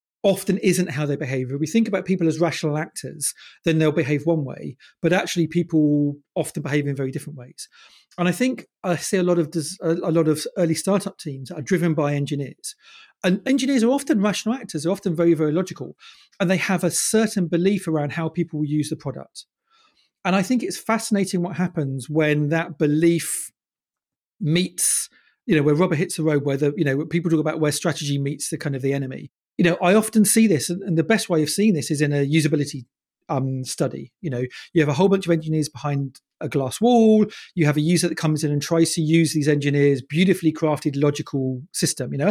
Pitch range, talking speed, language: 145-185 Hz, 215 wpm, English